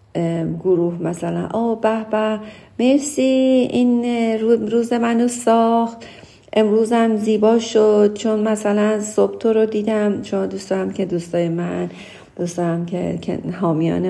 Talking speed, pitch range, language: 115 wpm, 165-195 Hz, Persian